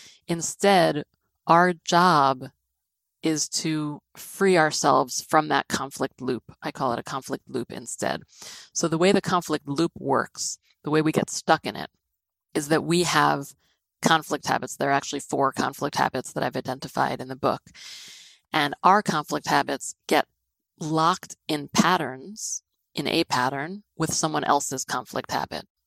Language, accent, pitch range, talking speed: English, American, 135-170 Hz, 155 wpm